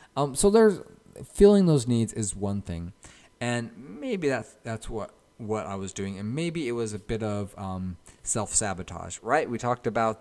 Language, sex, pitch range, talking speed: English, male, 100-120 Hz, 190 wpm